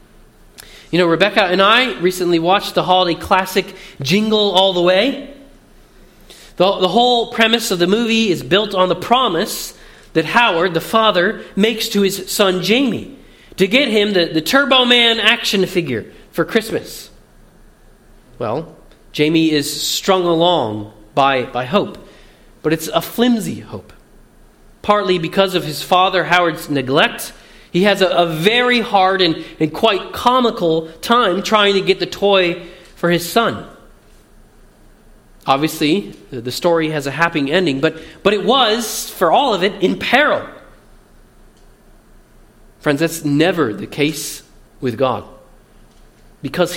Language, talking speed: English, 140 wpm